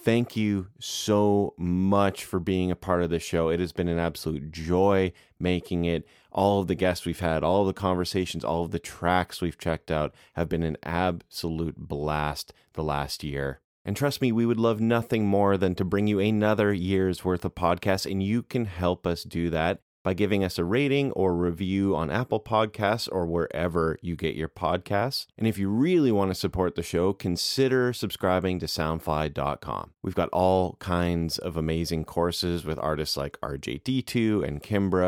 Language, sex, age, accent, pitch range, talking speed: English, male, 30-49, American, 85-105 Hz, 190 wpm